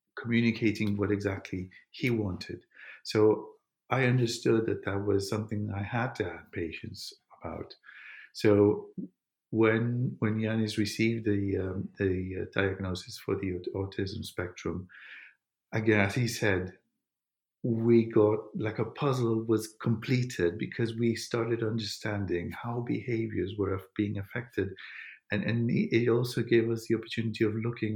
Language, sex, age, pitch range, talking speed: English, male, 50-69, 100-115 Hz, 135 wpm